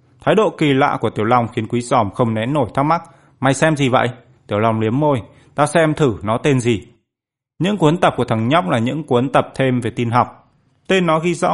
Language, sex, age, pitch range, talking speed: Vietnamese, male, 20-39, 110-145 Hz, 245 wpm